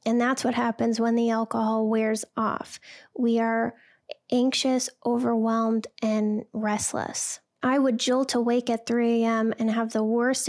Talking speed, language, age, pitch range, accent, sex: 150 wpm, English, 10-29, 225-250 Hz, American, female